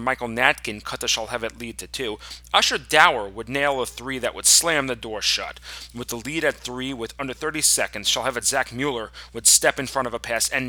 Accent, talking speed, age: American, 225 wpm, 30-49